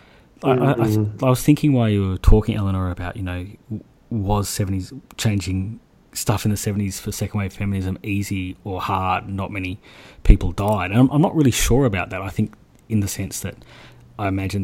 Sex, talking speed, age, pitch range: male, 190 wpm, 30-49, 95-110 Hz